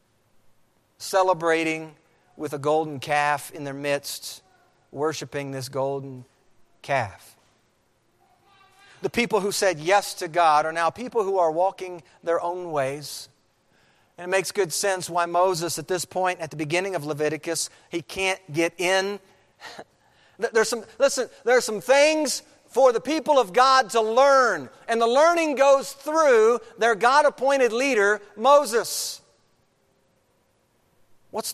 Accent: American